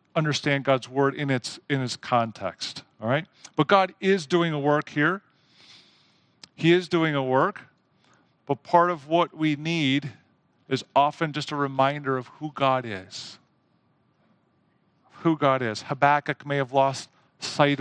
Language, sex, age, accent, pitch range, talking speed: English, male, 50-69, American, 130-160 Hz, 150 wpm